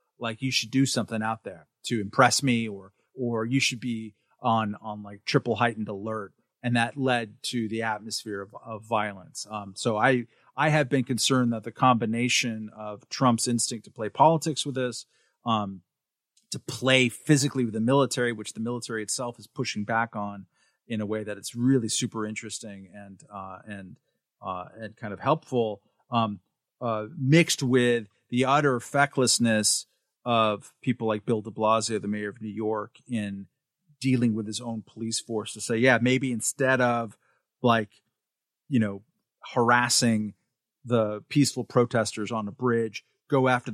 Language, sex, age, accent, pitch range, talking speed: English, male, 40-59, American, 110-125 Hz, 165 wpm